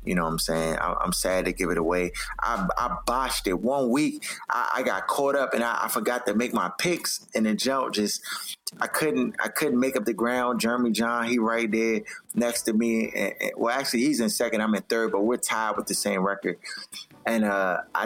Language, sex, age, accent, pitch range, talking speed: English, male, 20-39, American, 105-125 Hz, 235 wpm